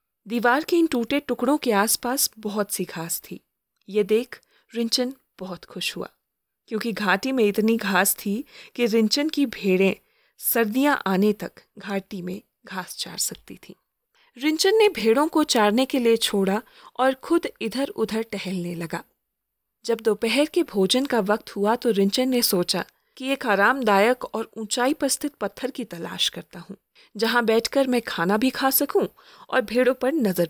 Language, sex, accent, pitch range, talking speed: Hindi, female, native, 200-265 Hz, 165 wpm